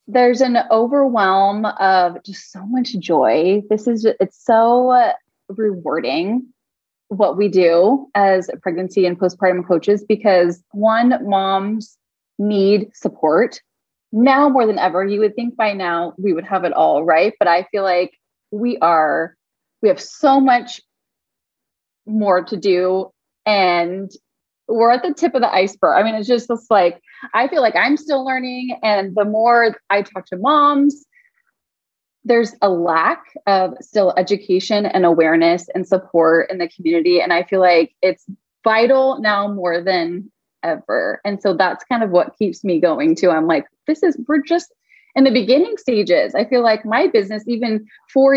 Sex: female